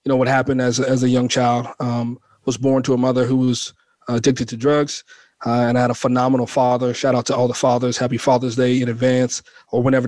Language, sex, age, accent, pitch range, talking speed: English, male, 40-59, American, 120-130 Hz, 240 wpm